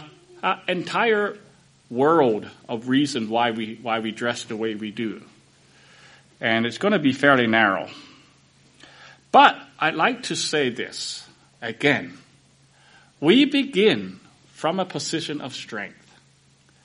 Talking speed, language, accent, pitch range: 125 wpm, English, American, 120-160 Hz